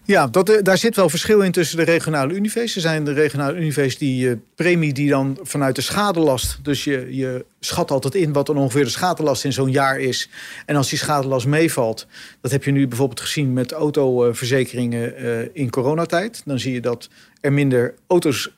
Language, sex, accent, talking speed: Dutch, male, Dutch, 195 wpm